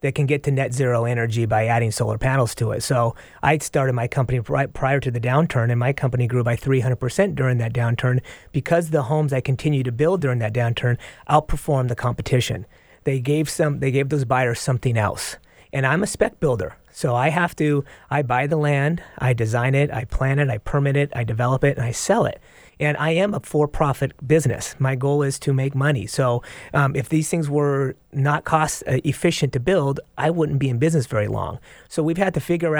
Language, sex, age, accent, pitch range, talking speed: English, male, 30-49, American, 125-150 Hz, 215 wpm